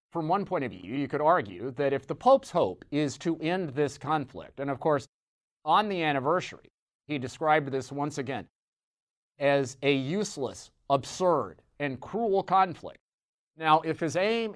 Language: English